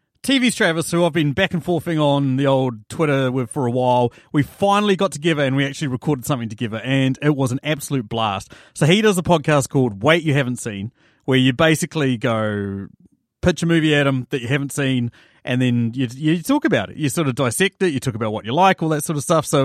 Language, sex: English, male